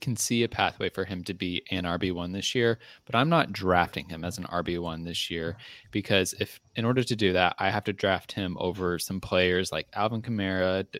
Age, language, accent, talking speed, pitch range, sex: 20-39, English, American, 230 wpm, 90-115 Hz, male